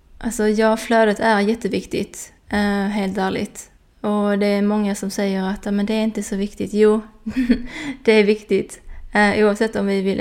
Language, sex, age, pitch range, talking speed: Swedish, female, 20-39, 195-215 Hz, 180 wpm